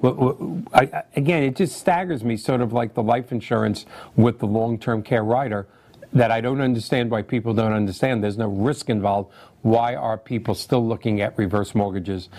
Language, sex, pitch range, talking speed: English, male, 105-125 Hz, 180 wpm